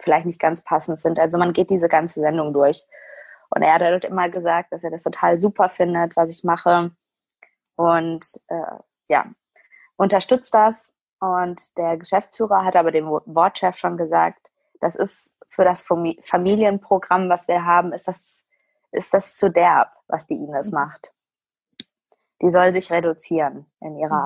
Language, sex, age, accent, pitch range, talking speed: German, female, 20-39, German, 165-195 Hz, 160 wpm